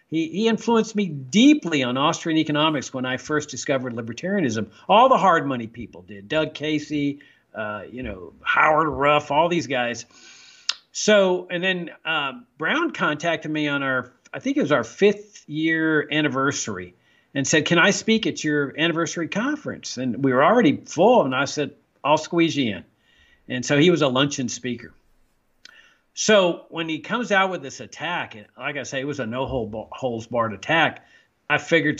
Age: 50-69